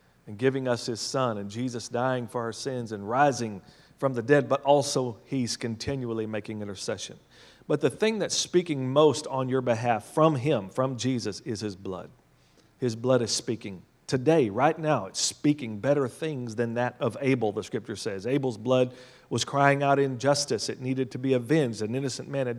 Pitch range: 120-150 Hz